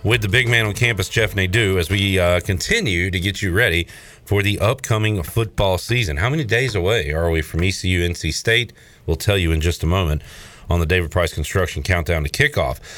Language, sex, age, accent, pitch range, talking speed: English, male, 40-59, American, 90-125 Hz, 215 wpm